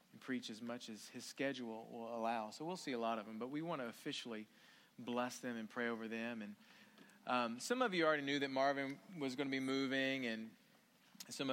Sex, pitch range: male, 120-145 Hz